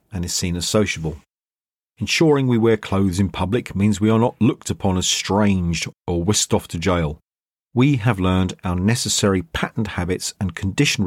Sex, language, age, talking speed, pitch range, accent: male, English, 40-59, 180 wpm, 90-115 Hz, British